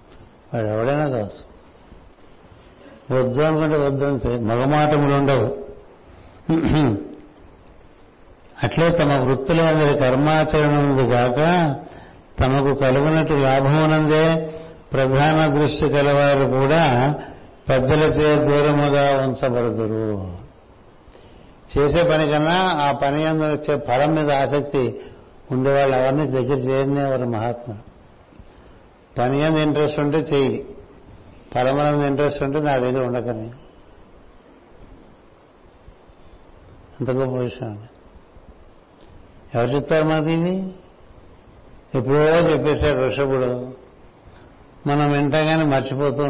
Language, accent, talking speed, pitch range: Telugu, native, 85 wpm, 130-150 Hz